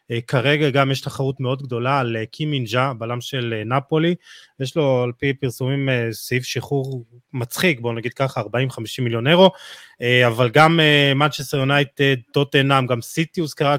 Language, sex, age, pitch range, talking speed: Hebrew, male, 20-39, 125-145 Hz, 170 wpm